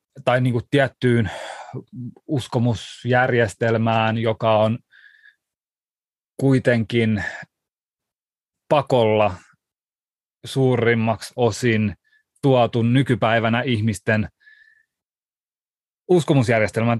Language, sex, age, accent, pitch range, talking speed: Finnish, male, 30-49, native, 115-145 Hz, 55 wpm